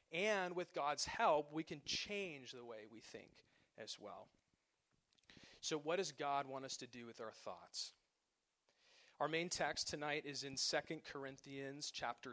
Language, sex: English, male